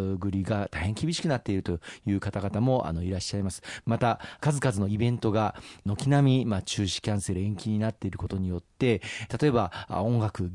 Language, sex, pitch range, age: Japanese, male, 95-120 Hz, 40-59